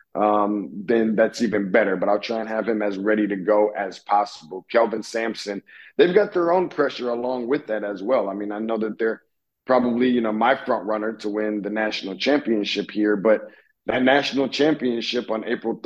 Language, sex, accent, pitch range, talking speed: English, male, American, 105-120 Hz, 200 wpm